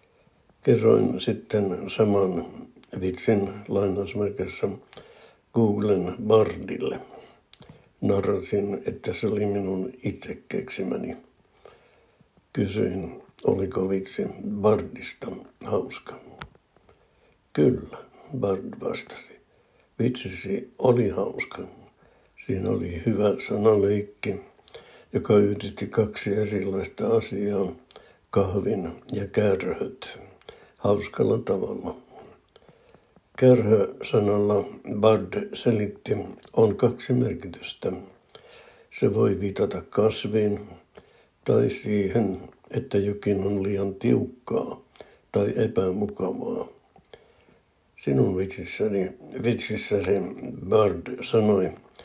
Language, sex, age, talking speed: Finnish, male, 60-79, 75 wpm